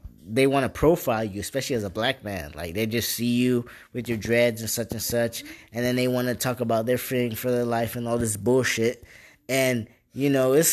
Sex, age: male, 20-39